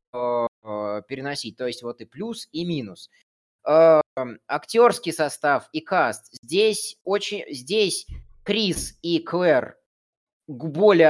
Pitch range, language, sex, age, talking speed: 140-205 Hz, Russian, male, 20-39, 105 wpm